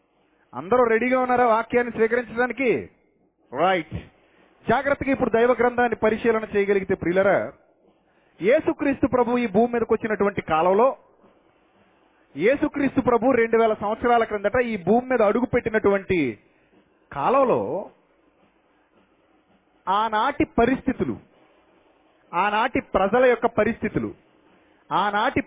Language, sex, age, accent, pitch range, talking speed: Telugu, male, 30-49, native, 210-250 Hz, 90 wpm